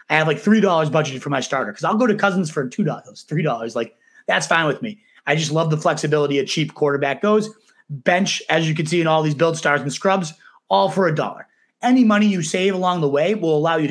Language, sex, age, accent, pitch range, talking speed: English, male, 30-49, American, 145-195 Hz, 240 wpm